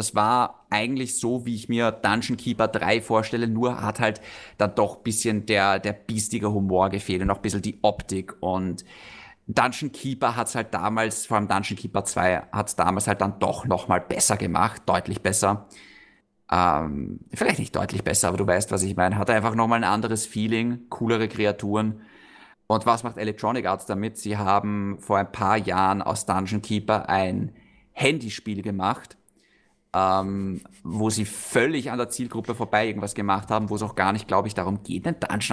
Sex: male